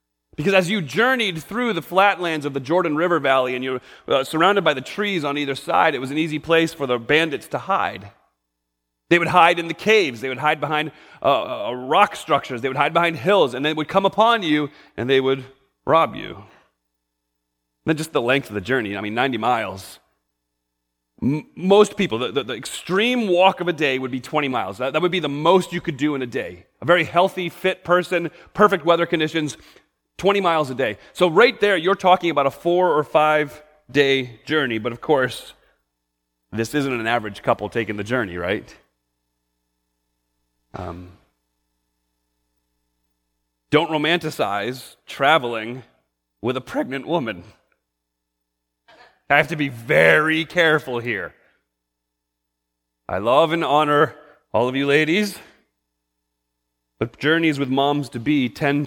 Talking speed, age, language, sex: 165 wpm, 30-49, English, male